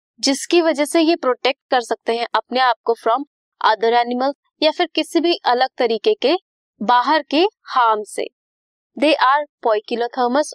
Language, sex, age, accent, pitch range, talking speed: Hindi, female, 20-39, native, 230-315 Hz, 160 wpm